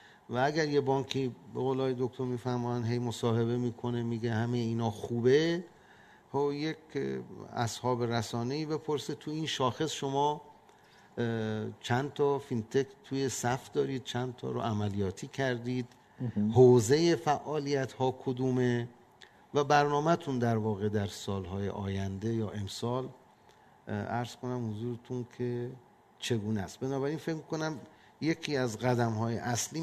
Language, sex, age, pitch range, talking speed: Persian, male, 50-69, 110-145 Hz, 125 wpm